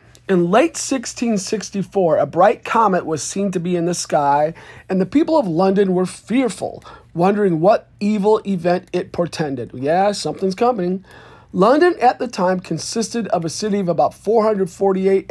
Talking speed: 155 wpm